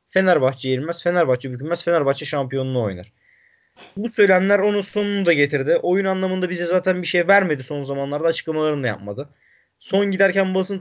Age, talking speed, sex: 20-39, 155 wpm, male